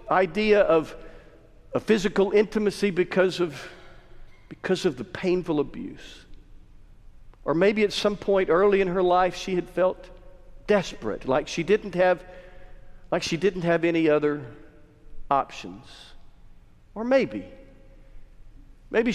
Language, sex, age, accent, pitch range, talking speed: English, male, 50-69, American, 150-195 Hz, 120 wpm